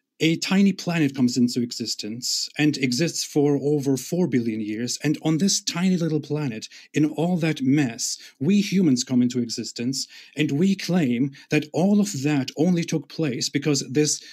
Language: English